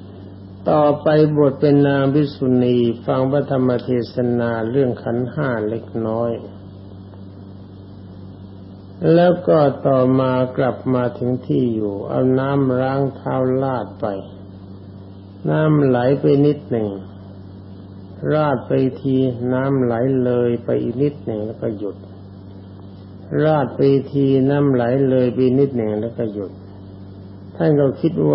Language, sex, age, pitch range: Thai, male, 60-79, 95-130 Hz